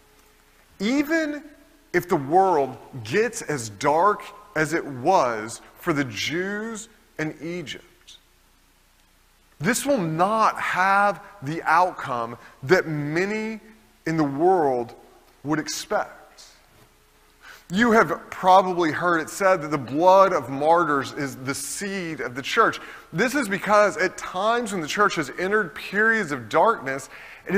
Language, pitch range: English, 160-215 Hz